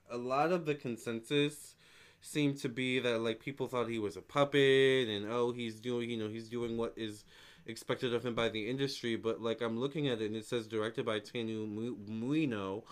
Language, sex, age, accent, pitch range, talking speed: English, male, 20-39, American, 100-130 Hz, 210 wpm